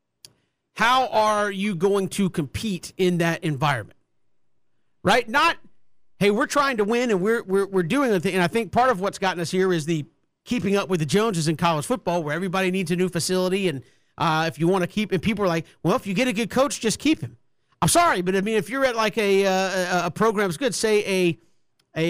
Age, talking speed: 50-69, 235 wpm